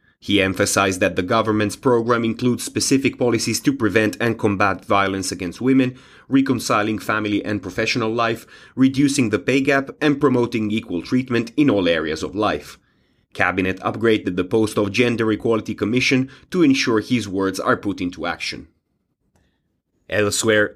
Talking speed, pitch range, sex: 145 wpm, 105-120 Hz, male